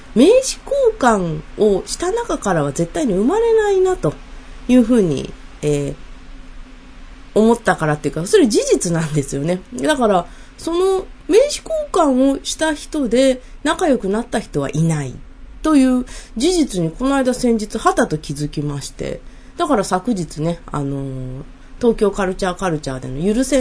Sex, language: female, Japanese